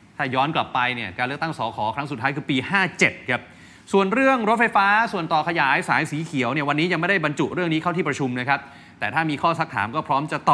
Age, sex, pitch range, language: 20-39, male, 130-170 Hz, Thai